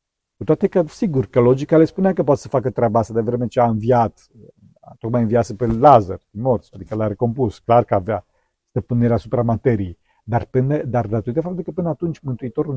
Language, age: Romanian, 50-69